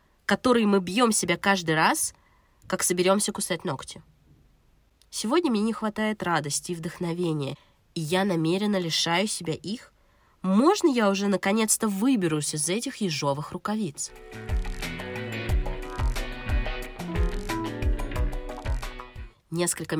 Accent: native